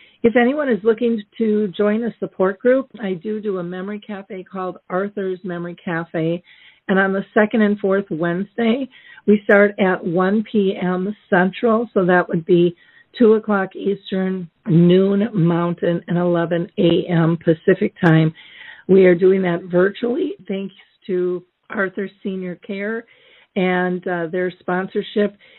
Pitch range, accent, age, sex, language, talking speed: 175-205 Hz, American, 50-69, female, English, 140 wpm